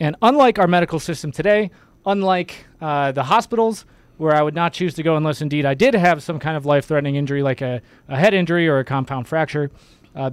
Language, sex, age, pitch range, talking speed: English, male, 20-39, 140-175 Hz, 215 wpm